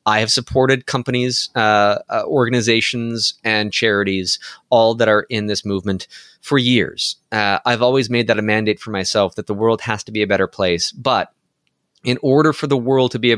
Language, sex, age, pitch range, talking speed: English, male, 20-39, 110-140 Hz, 195 wpm